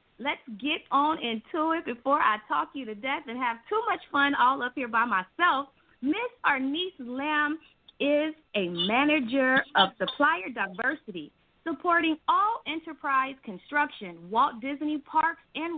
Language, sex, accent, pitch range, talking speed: English, female, American, 230-315 Hz, 145 wpm